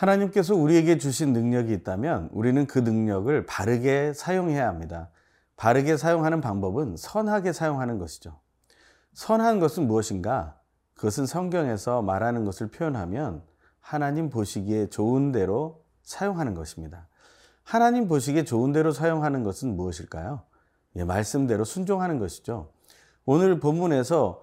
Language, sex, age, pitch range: Korean, male, 30-49, 100-160 Hz